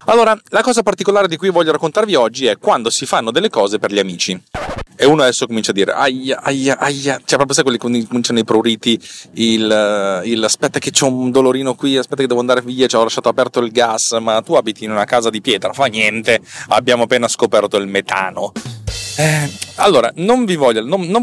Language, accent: Italian, native